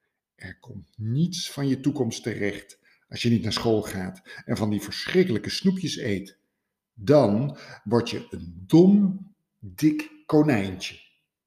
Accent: Dutch